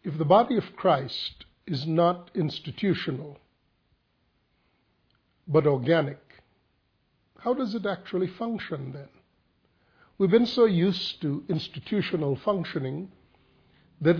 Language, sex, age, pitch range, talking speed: English, male, 50-69, 140-180 Hz, 100 wpm